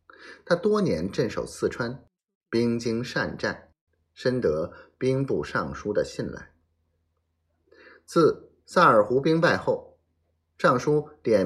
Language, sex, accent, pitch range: Chinese, male, native, 80-140 Hz